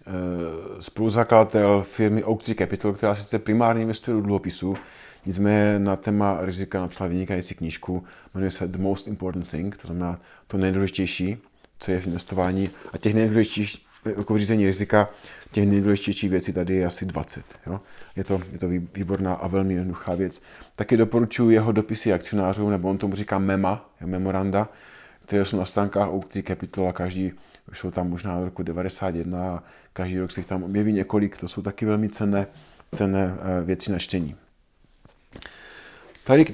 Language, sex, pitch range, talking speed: Czech, male, 95-110 Hz, 160 wpm